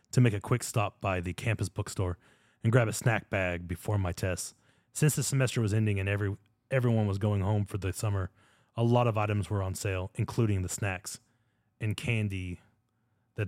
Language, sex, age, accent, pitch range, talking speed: English, male, 30-49, American, 100-115 Hz, 190 wpm